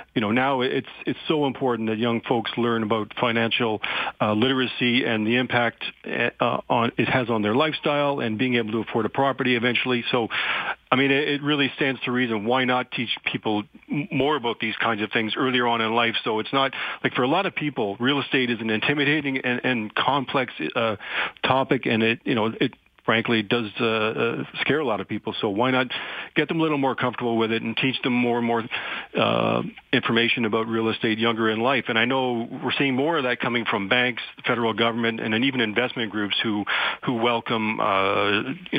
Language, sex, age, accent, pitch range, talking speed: English, male, 40-59, American, 110-130 Hz, 215 wpm